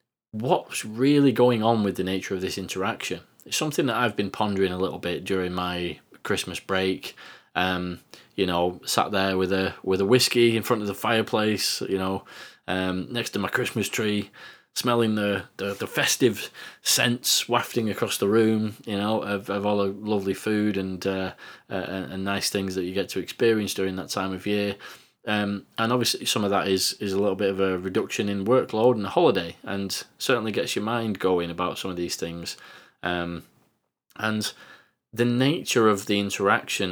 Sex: male